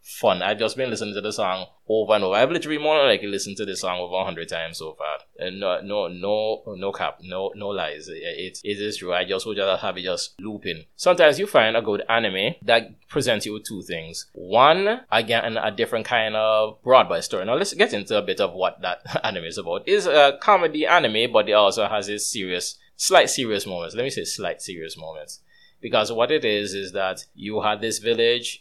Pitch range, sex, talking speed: 95-130 Hz, male, 225 wpm